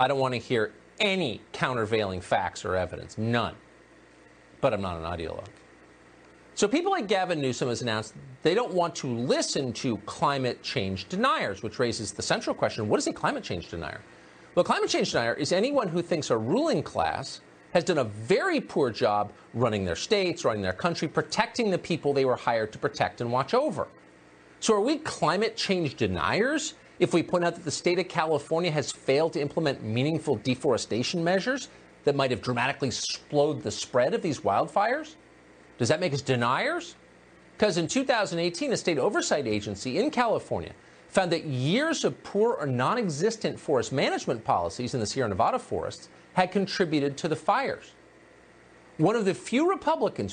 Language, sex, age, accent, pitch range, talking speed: English, male, 40-59, American, 115-185 Hz, 175 wpm